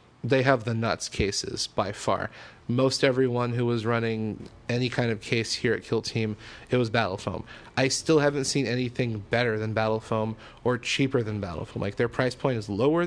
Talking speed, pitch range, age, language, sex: 200 wpm, 115-140 Hz, 30-49, English, male